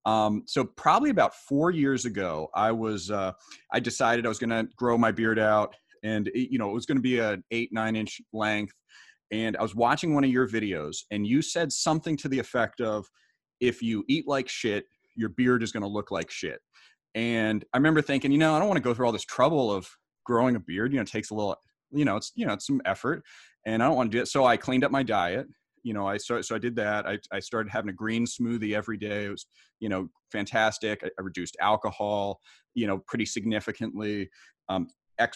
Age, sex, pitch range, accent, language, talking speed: 30-49, male, 105-120 Hz, American, English, 240 wpm